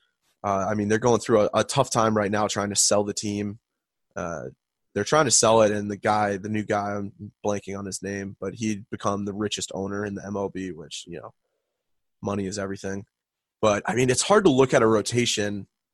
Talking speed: 220 wpm